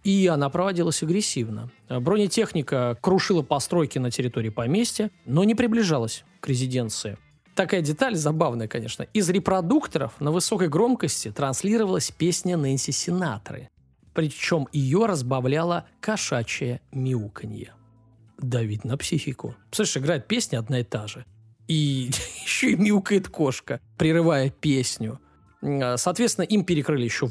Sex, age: male, 20-39